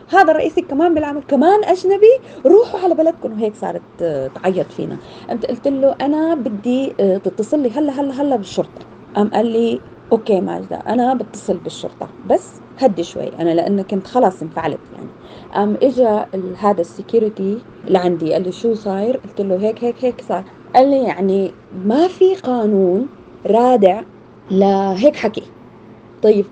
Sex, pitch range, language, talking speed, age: female, 195-285 Hz, Arabic, 145 wpm, 20-39